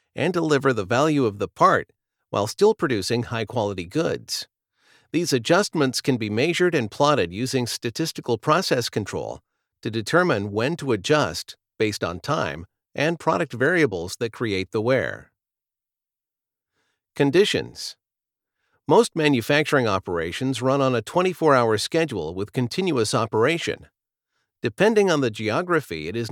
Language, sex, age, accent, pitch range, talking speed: English, male, 50-69, American, 110-160 Hz, 130 wpm